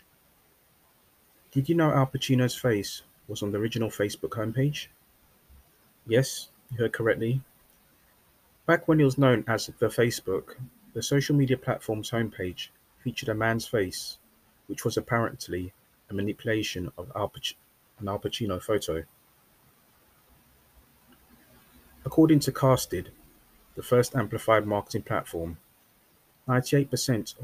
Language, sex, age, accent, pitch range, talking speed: English, male, 30-49, British, 95-125 Hz, 115 wpm